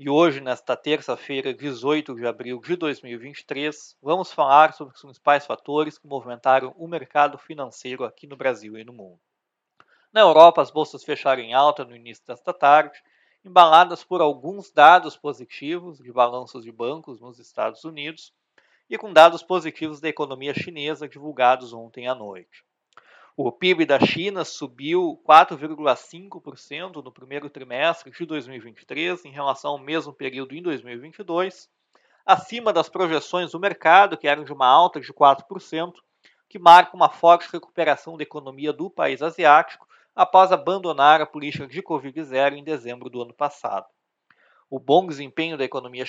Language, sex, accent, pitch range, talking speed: Portuguese, male, Brazilian, 135-170 Hz, 150 wpm